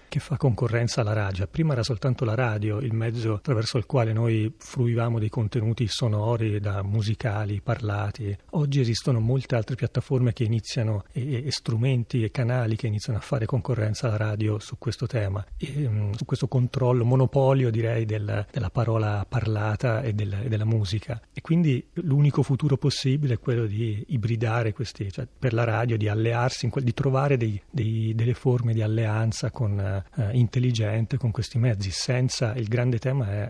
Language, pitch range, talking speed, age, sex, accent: Italian, 110-125 Hz, 175 wpm, 30-49, male, native